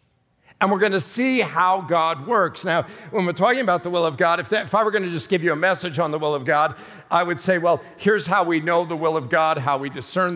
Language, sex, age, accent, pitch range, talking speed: English, male, 50-69, American, 165-205 Hz, 265 wpm